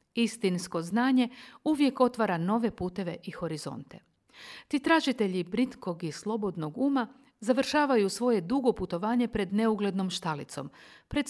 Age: 50-69